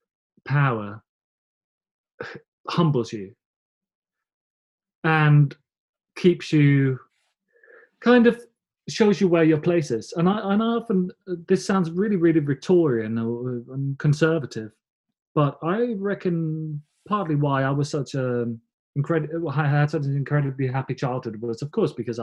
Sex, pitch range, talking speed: male, 130-175 Hz, 125 wpm